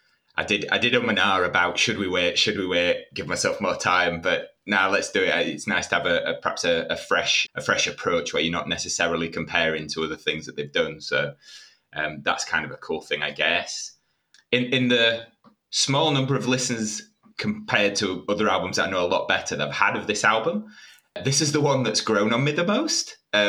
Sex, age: male, 20-39